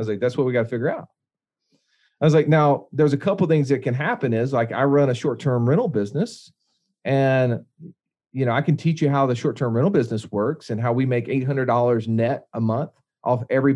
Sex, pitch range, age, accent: male, 120-155 Hz, 40-59, American